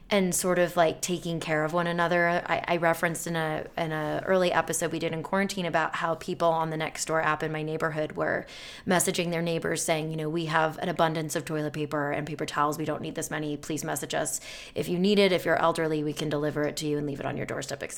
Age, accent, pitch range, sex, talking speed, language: 20-39, American, 165-205 Hz, female, 255 wpm, English